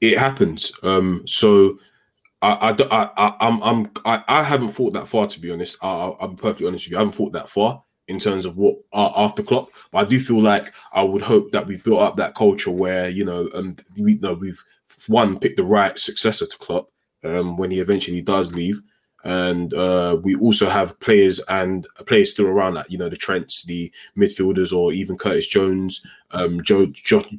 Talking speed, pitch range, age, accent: 205 wpm, 90-115 Hz, 20-39, British